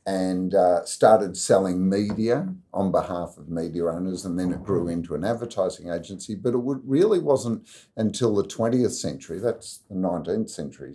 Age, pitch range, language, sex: 50-69, 85-110 Hz, English, male